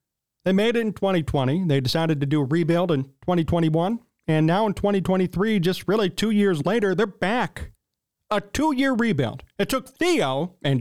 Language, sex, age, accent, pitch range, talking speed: English, male, 40-59, American, 155-220 Hz, 170 wpm